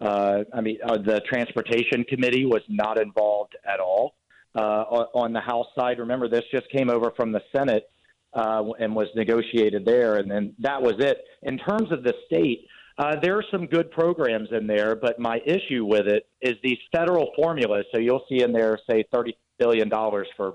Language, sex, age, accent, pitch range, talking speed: English, male, 40-59, American, 110-130 Hz, 195 wpm